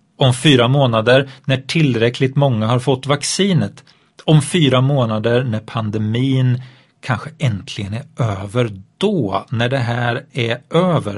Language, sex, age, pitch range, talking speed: Swedish, male, 40-59, 115-160 Hz, 130 wpm